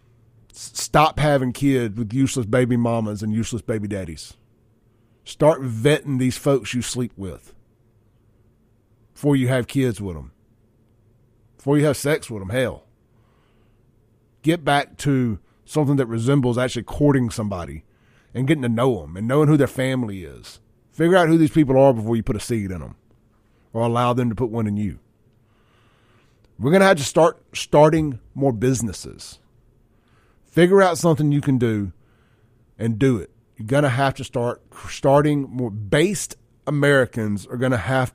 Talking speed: 165 wpm